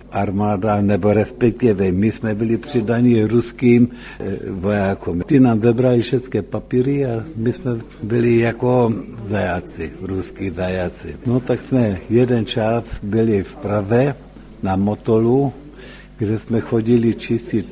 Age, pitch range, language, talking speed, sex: 60-79, 110-125 Hz, Czech, 120 wpm, male